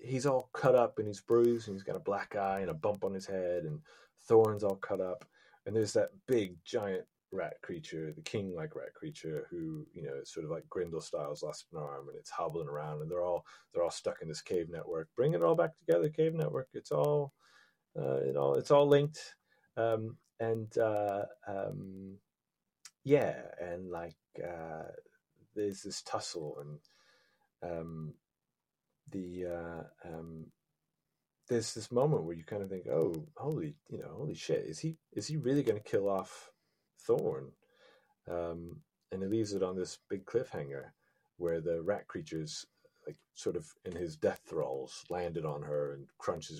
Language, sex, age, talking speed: English, male, 30-49, 180 wpm